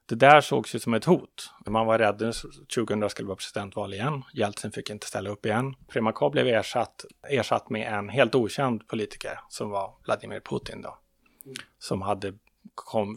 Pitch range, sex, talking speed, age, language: 105-135 Hz, male, 180 wpm, 30-49, Swedish